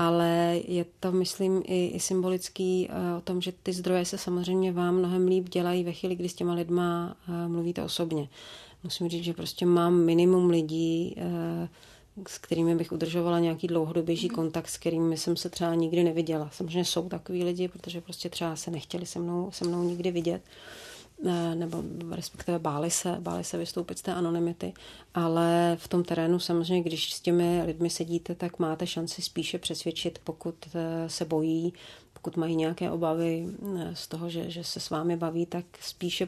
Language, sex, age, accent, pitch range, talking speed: Czech, female, 40-59, native, 165-175 Hz, 165 wpm